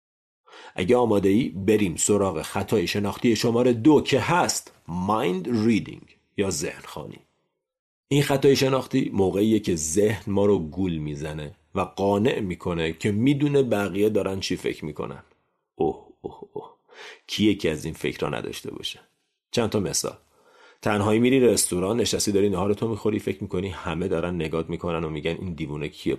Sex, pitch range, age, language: male, 90-120 Hz, 40-59, Persian